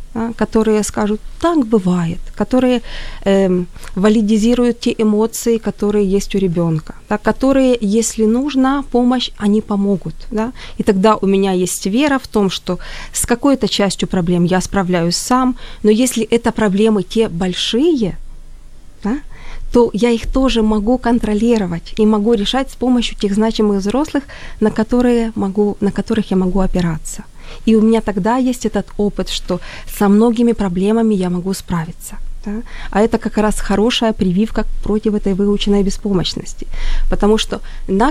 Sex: female